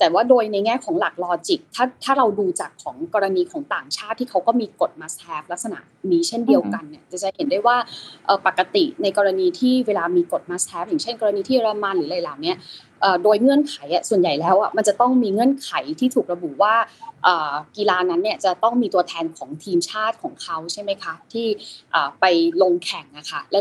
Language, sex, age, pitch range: Thai, female, 20-39, 195-285 Hz